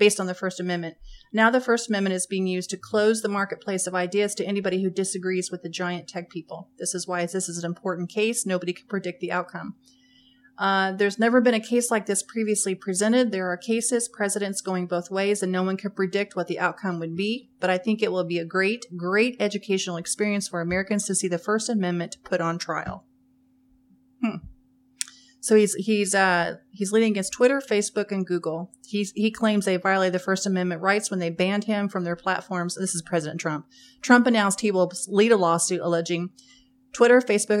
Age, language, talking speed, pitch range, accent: 30-49, English, 205 wpm, 180-230 Hz, American